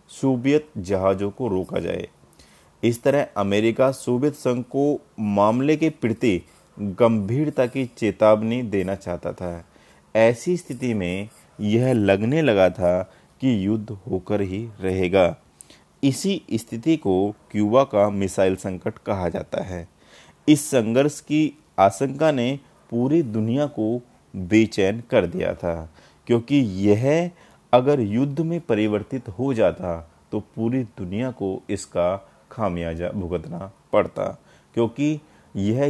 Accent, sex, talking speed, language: native, male, 120 wpm, Hindi